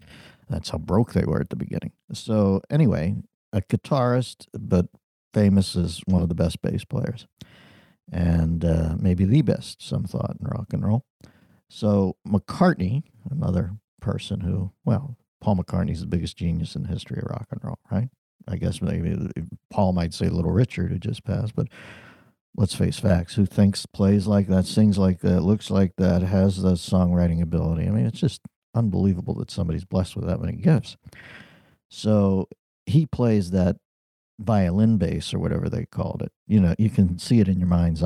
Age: 50-69